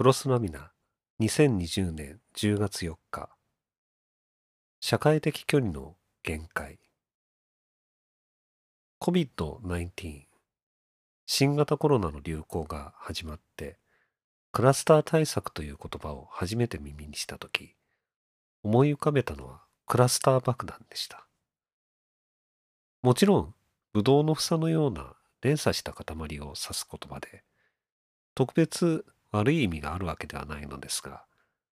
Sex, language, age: male, Japanese, 40-59